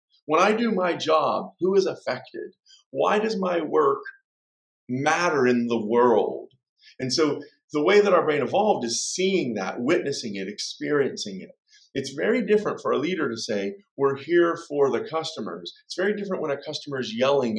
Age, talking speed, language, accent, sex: 40-59, 175 wpm, English, American, male